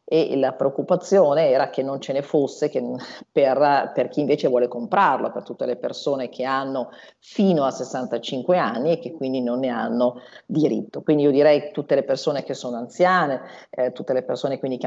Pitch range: 125-145 Hz